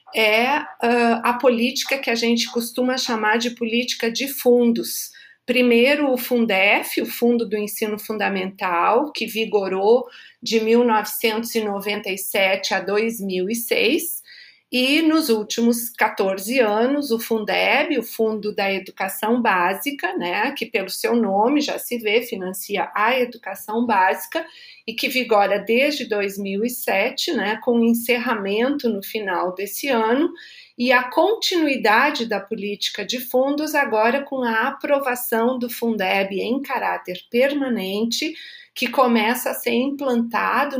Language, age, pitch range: Portuguese, 40-59, 205-255 Hz